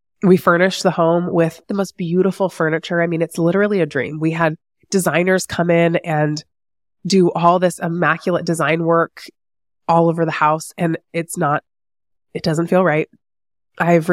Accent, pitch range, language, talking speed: American, 150-180 Hz, English, 165 wpm